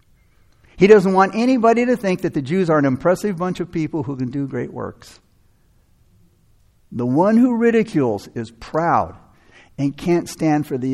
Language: English